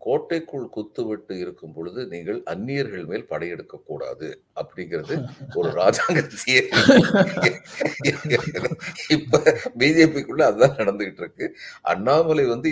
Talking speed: 70 wpm